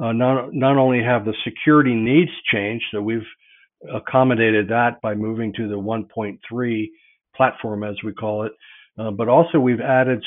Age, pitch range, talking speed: 50-69, 110-130 Hz, 165 wpm